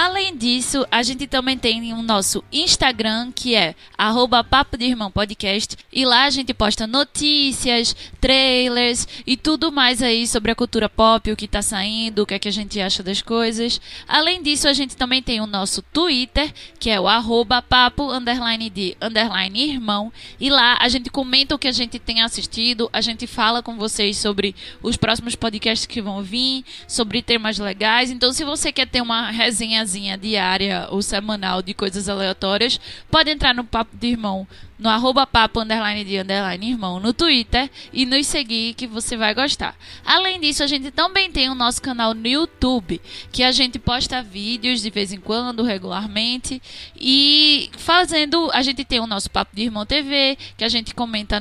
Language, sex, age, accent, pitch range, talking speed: Portuguese, female, 20-39, Brazilian, 220-265 Hz, 185 wpm